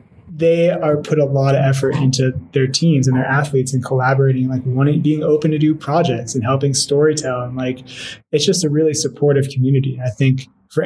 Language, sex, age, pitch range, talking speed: English, male, 20-39, 135-155 Hz, 205 wpm